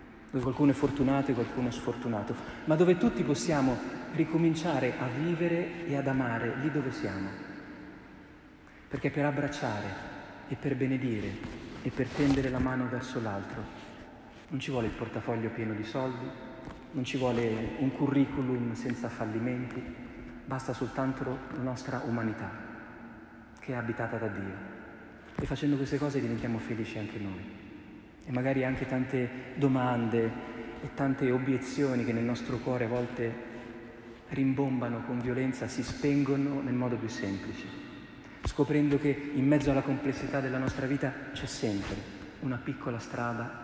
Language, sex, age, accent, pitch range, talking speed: Italian, male, 40-59, native, 115-135 Hz, 140 wpm